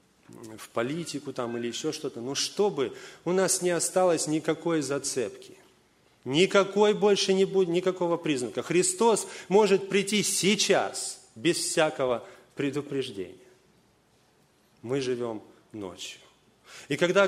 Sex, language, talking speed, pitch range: male, Russian, 110 wpm, 130-185 Hz